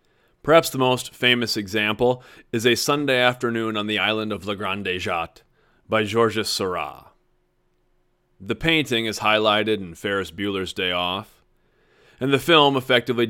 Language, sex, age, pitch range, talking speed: English, male, 30-49, 95-120 Hz, 145 wpm